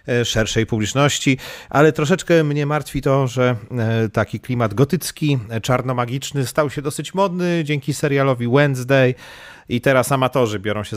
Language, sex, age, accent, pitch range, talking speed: Polish, male, 40-59, native, 100-135 Hz, 130 wpm